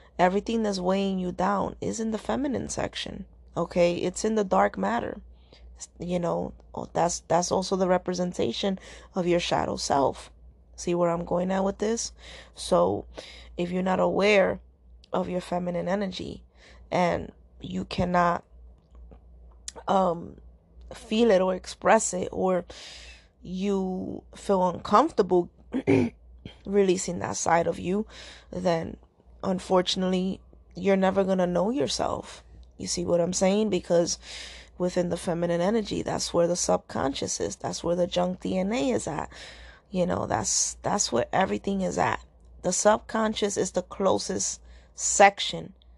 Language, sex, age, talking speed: English, female, 20-39, 135 wpm